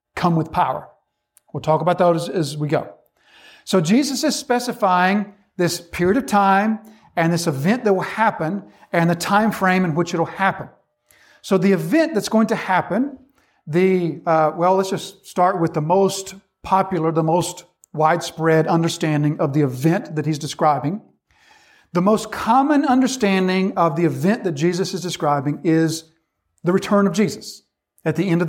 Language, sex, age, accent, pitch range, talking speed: English, male, 50-69, American, 170-205 Hz, 165 wpm